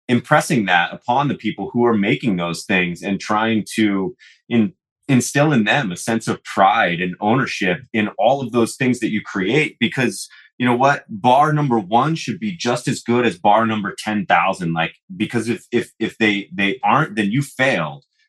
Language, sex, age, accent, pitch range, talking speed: English, male, 30-49, American, 90-115 Hz, 185 wpm